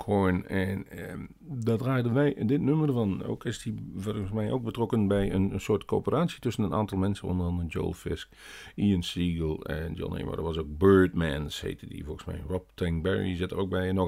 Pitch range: 90-125 Hz